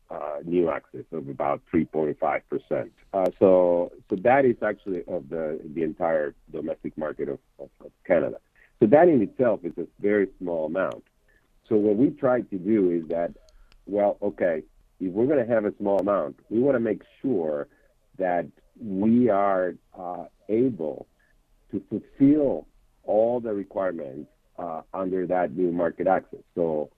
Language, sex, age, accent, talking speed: English, male, 60-79, American, 160 wpm